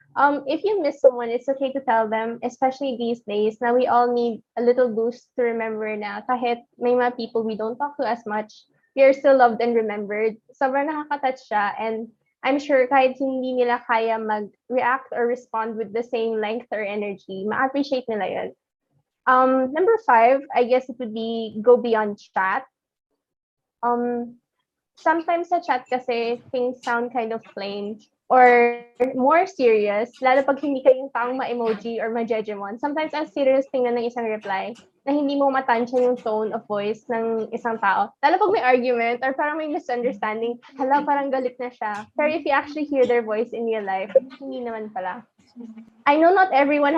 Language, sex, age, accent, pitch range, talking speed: Filipino, female, 20-39, native, 225-270 Hz, 180 wpm